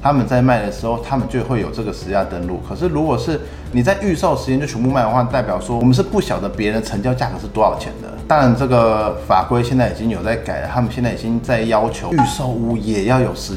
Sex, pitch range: male, 105-130 Hz